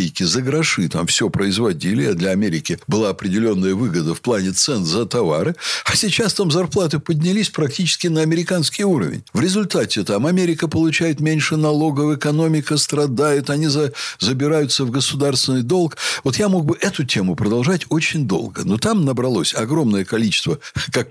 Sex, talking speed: male, 155 wpm